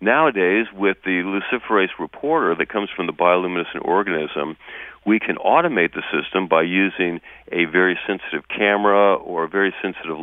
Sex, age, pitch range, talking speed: male, 40-59, 90-105 Hz, 155 wpm